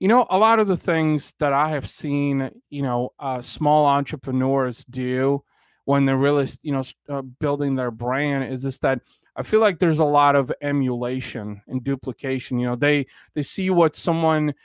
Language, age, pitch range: English, 20-39, 130-155 Hz